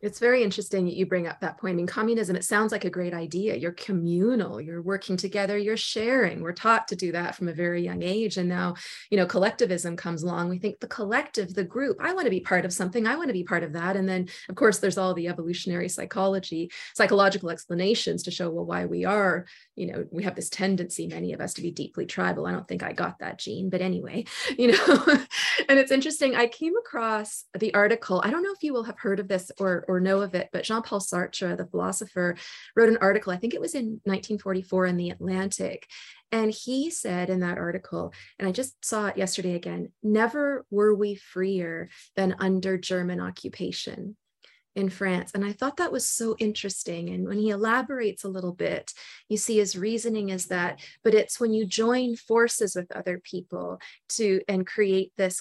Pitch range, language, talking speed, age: 180-220 Hz, English, 215 wpm, 30-49